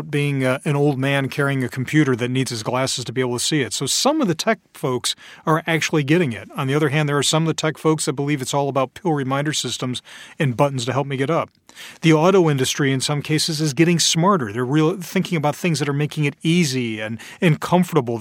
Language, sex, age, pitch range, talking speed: English, male, 40-59, 135-175 Hz, 250 wpm